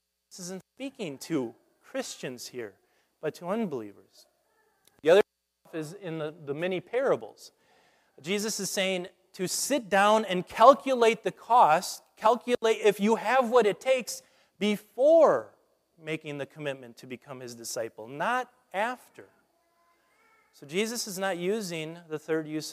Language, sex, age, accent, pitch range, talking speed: English, male, 30-49, American, 150-230 Hz, 135 wpm